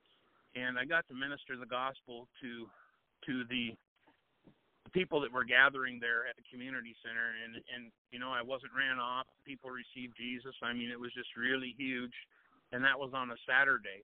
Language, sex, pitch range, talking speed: English, male, 125-140 Hz, 190 wpm